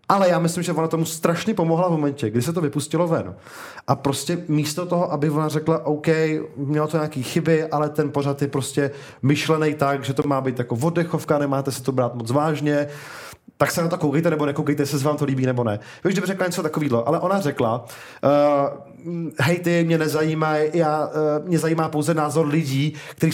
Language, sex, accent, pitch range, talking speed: Czech, male, native, 145-165 Hz, 205 wpm